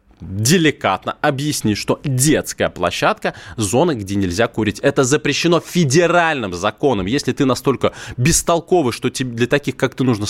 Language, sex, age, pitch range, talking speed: Russian, male, 20-39, 105-145 Hz, 145 wpm